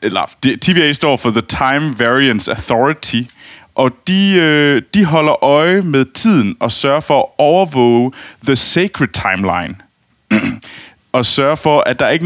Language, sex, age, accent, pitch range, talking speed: Danish, male, 20-39, native, 115-155 Hz, 145 wpm